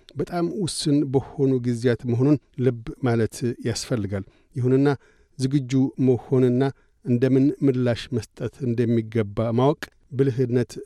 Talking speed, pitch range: 95 wpm, 115-130 Hz